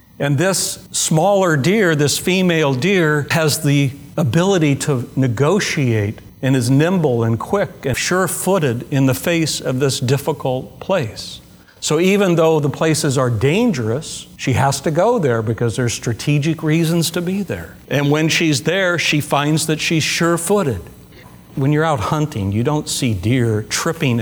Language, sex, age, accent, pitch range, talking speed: English, male, 60-79, American, 110-145 Hz, 155 wpm